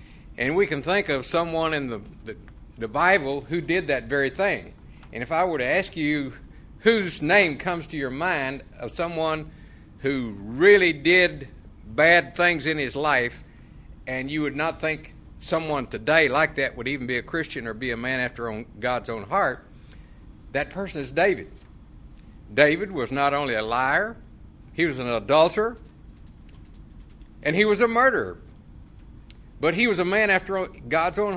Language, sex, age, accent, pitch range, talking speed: English, male, 60-79, American, 120-175 Hz, 170 wpm